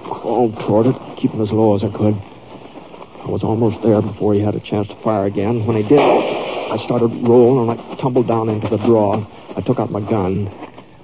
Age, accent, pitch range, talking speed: 60-79, American, 100-115 Hz, 210 wpm